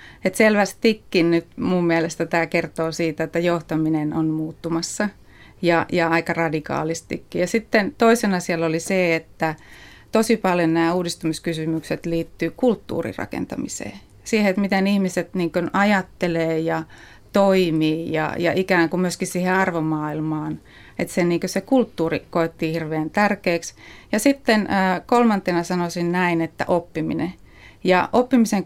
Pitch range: 160-185 Hz